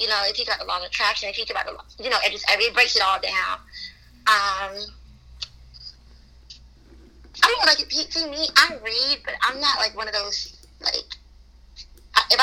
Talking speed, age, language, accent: 205 wpm, 30-49, English, American